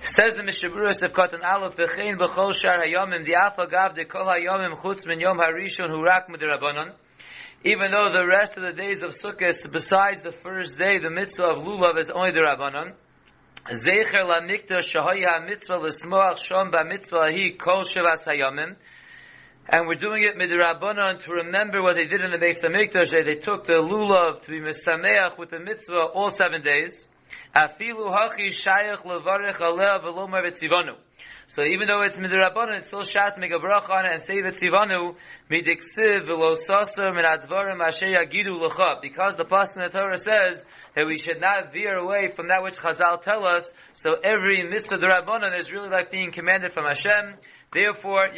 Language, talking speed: English, 160 wpm